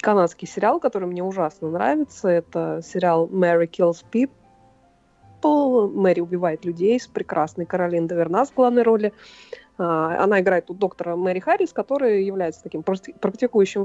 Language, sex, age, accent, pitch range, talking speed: Russian, female, 20-39, native, 175-225 Hz, 125 wpm